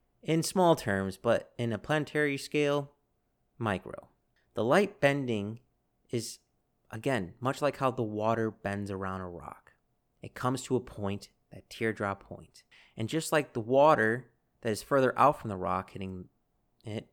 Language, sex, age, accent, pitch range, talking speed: English, male, 30-49, American, 100-130 Hz, 160 wpm